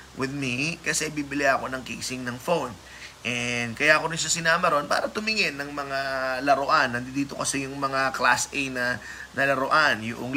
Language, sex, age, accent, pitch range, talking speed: Filipino, male, 20-39, native, 135-185 Hz, 175 wpm